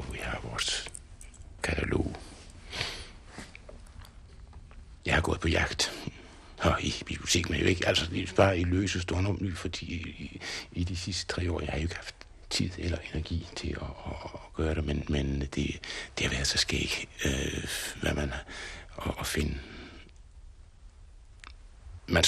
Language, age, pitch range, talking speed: Danish, 60-79, 75-90 Hz, 165 wpm